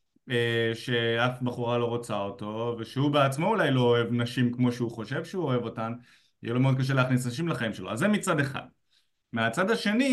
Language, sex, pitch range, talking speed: Hebrew, male, 125-185 Hz, 190 wpm